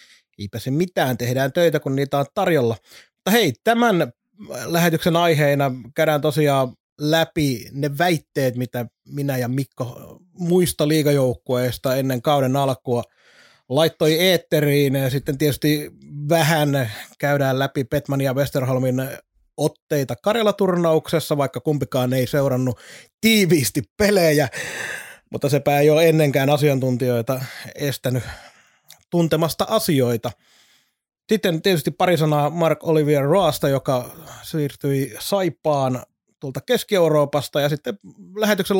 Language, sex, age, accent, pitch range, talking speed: Finnish, male, 30-49, native, 130-165 Hz, 110 wpm